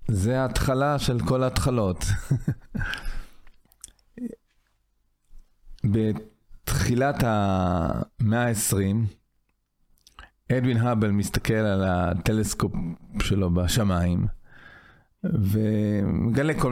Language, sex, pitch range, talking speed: Hebrew, male, 100-125 Hz, 60 wpm